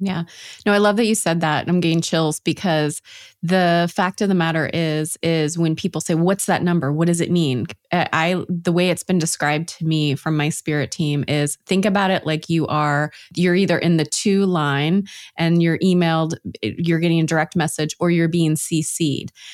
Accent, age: American, 20-39